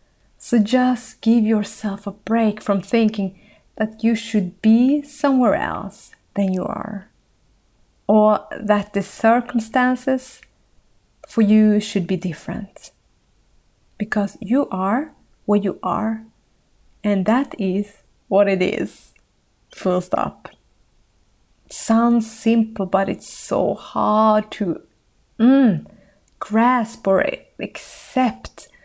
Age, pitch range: 30-49, 200-245 Hz